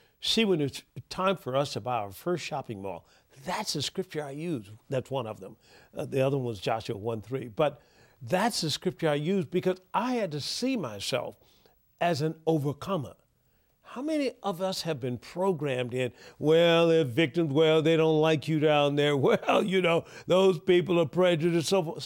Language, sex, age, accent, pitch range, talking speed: English, male, 50-69, American, 130-180 Hz, 190 wpm